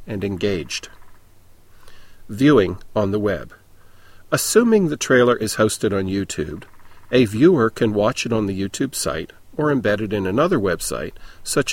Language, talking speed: English, 150 wpm